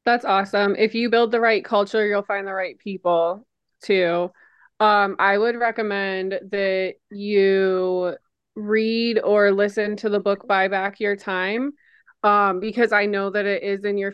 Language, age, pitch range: English, 20-39, 190-215 Hz